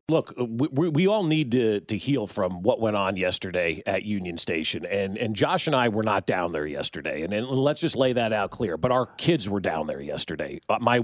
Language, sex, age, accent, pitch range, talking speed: English, male, 40-59, American, 105-130 Hz, 230 wpm